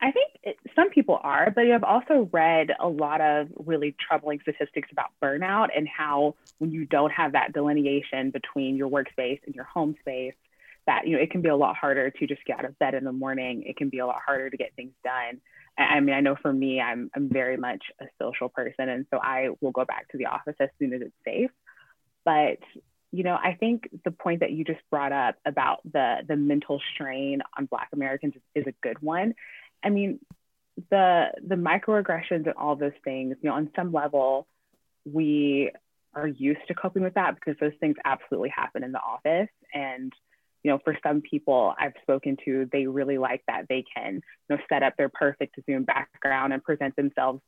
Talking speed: 210 wpm